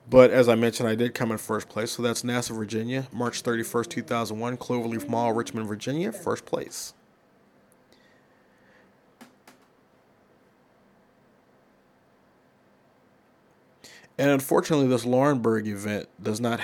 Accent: American